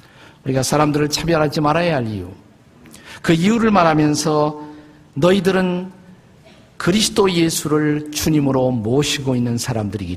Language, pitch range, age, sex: Korean, 135-175 Hz, 50-69, male